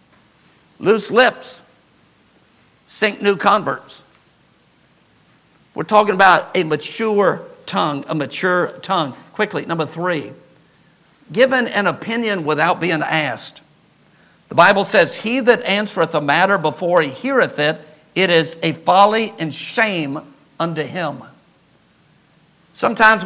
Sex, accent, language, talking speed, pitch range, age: male, American, English, 115 wpm, 160-210 Hz, 50-69